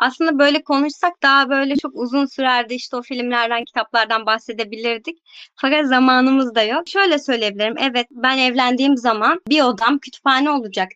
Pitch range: 235-300 Hz